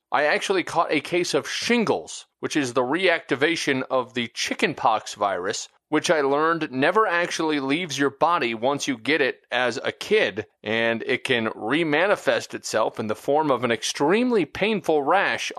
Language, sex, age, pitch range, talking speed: English, male, 30-49, 125-165 Hz, 165 wpm